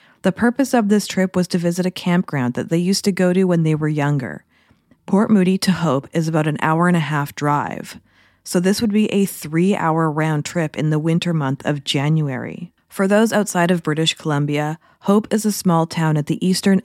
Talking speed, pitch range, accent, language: 215 wpm, 150-180 Hz, American, English